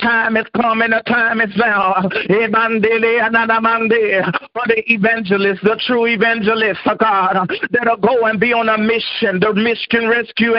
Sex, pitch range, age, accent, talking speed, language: male, 225-255 Hz, 50-69, American, 135 wpm, English